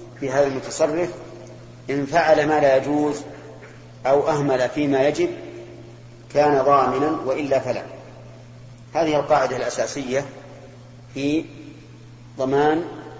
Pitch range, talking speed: 120-145 Hz, 95 wpm